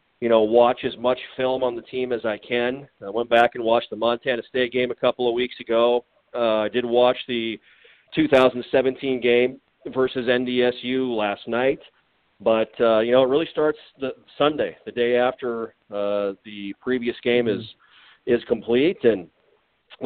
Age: 40-59